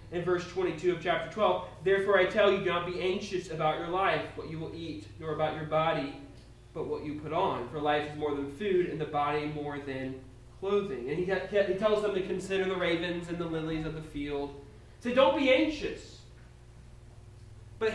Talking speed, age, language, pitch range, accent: 205 wpm, 30-49, English, 150-220 Hz, American